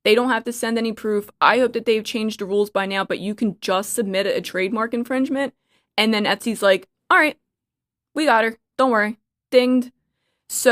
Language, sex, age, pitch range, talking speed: English, female, 20-39, 190-235 Hz, 205 wpm